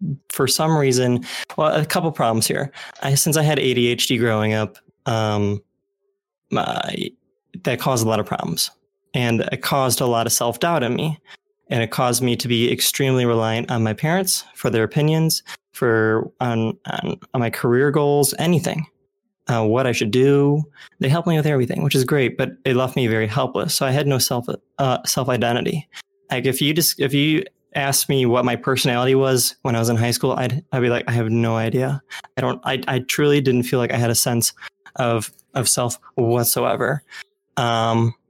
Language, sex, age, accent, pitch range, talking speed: English, male, 20-39, American, 120-145 Hz, 195 wpm